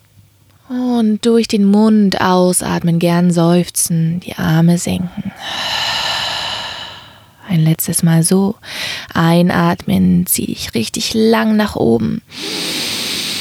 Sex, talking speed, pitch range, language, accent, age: female, 95 wpm, 120-190 Hz, German, German, 20-39